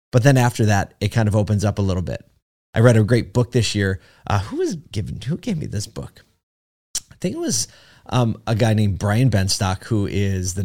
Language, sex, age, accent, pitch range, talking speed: English, male, 30-49, American, 95-110 Hz, 230 wpm